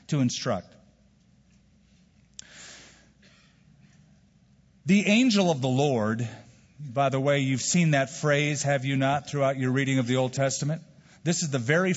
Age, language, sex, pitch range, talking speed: 40-59, English, male, 130-175 Hz, 140 wpm